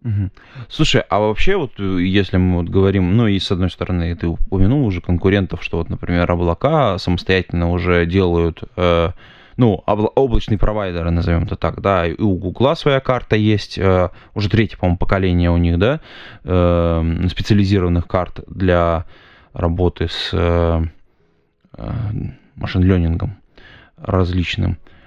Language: Russian